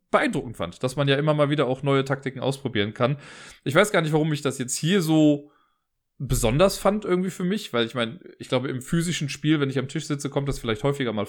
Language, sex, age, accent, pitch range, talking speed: German, male, 20-39, German, 120-150 Hz, 245 wpm